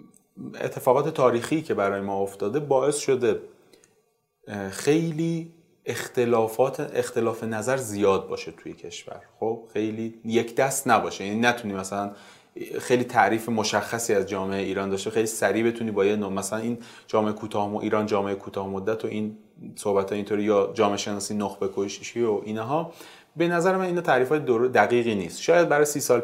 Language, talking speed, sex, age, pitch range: Persian, 150 wpm, male, 30-49, 105-170 Hz